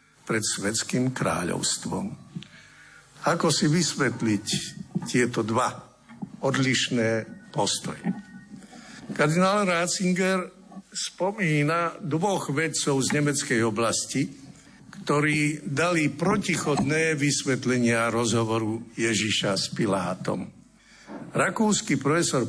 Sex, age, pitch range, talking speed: male, 60-79, 115-175 Hz, 75 wpm